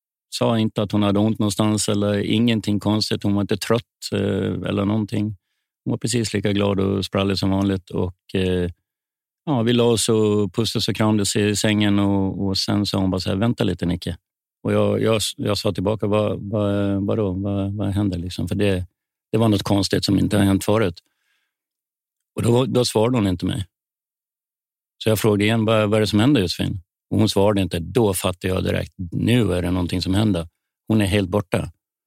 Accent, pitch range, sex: native, 95-105 Hz, male